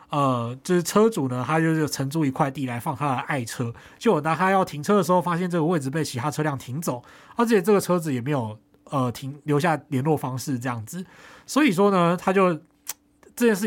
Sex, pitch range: male, 130-175 Hz